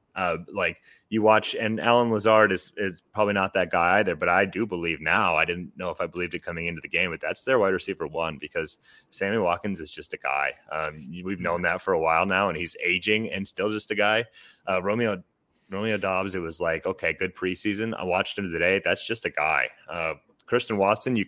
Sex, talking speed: male, 230 wpm